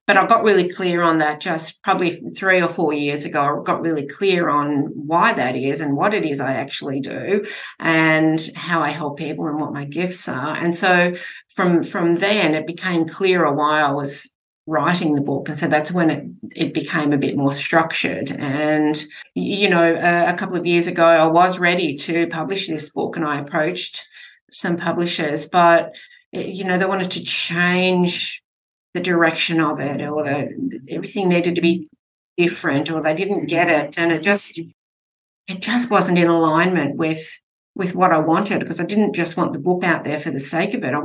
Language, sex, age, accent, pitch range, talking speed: English, female, 30-49, Australian, 155-185 Hz, 200 wpm